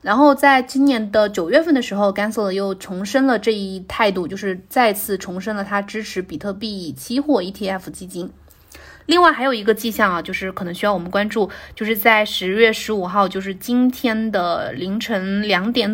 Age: 20-39